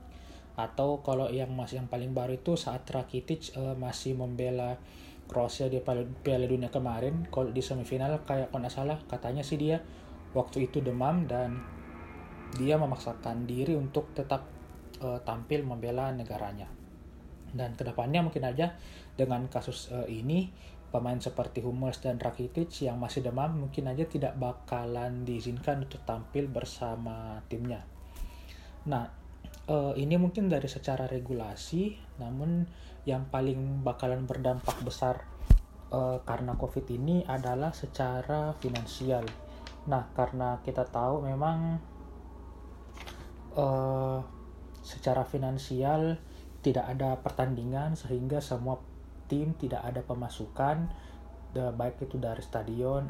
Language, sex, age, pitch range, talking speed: Indonesian, male, 20-39, 115-135 Hz, 120 wpm